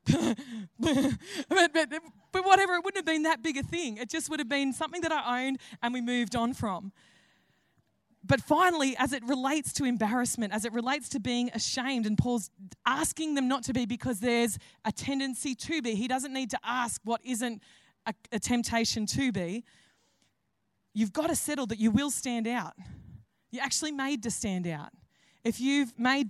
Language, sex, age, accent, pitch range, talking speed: English, female, 20-39, Australian, 235-280 Hz, 185 wpm